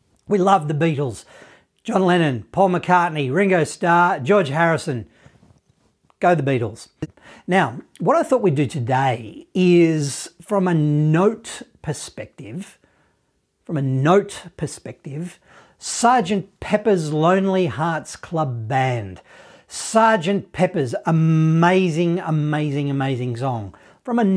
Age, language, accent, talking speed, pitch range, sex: 40-59, English, Australian, 110 wpm, 145-190 Hz, male